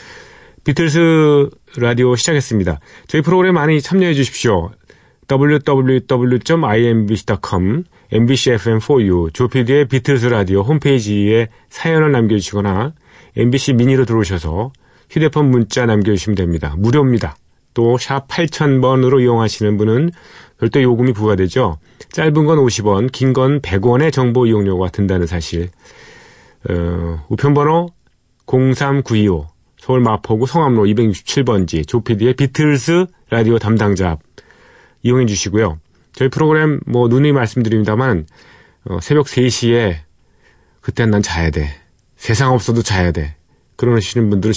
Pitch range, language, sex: 100-135 Hz, Korean, male